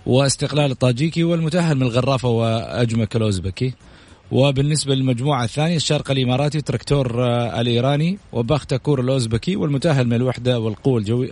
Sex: male